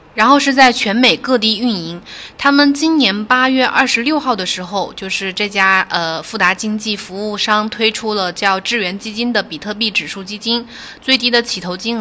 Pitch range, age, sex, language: 190-240 Hz, 20-39, female, Chinese